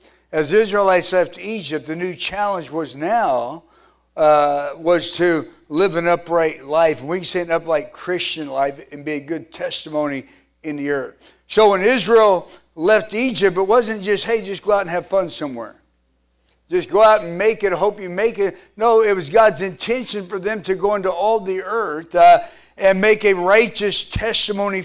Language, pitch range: English, 175-215 Hz